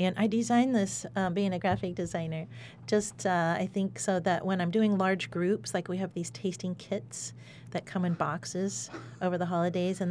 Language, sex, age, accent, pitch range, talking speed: English, female, 40-59, American, 160-185 Hz, 200 wpm